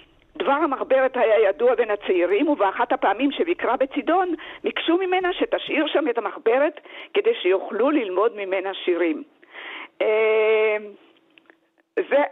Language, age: Hebrew, 50-69